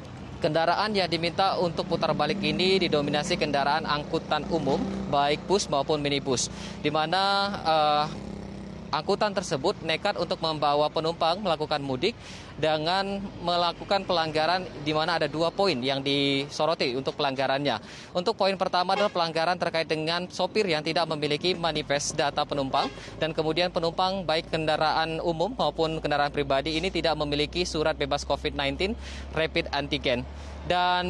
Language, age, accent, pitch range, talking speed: Indonesian, 20-39, native, 150-180 Hz, 135 wpm